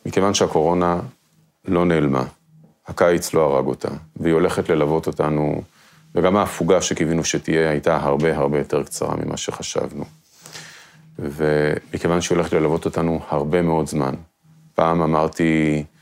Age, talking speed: 30-49, 125 wpm